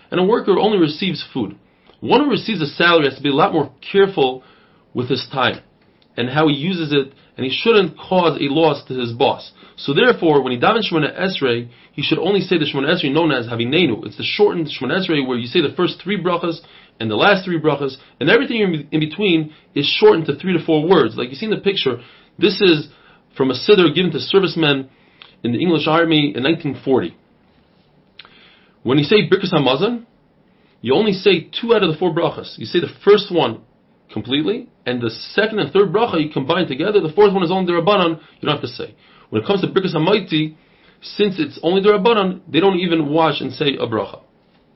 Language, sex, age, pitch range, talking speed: English, male, 30-49, 140-190 Hz, 215 wpm